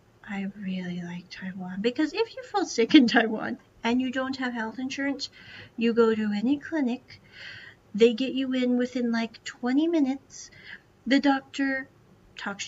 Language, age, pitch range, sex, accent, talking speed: English, 40-59, 205-270 Hz, female, American, 155 wpm